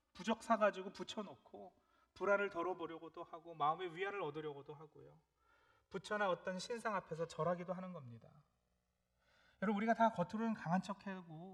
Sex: male